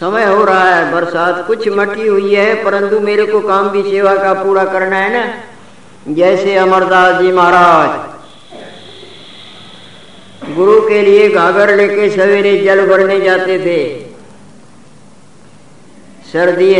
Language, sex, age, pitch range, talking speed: Hindi, female, 50-69, 165-200 Hz, 125 wpm